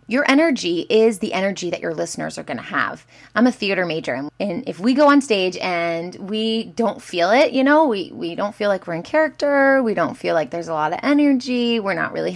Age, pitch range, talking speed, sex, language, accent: 20-39, 190-275 Hz, 240 wpm, female, English, American